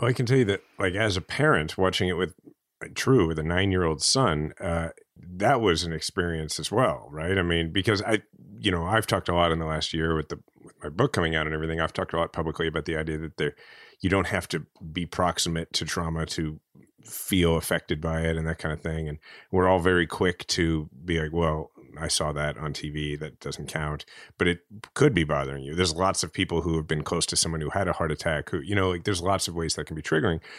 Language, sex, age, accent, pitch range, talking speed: English, male, 30-49, American, 80-95 Hz, 250 wpm